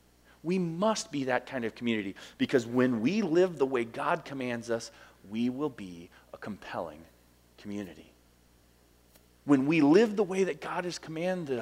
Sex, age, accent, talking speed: male, 30-49, American, 160 wpm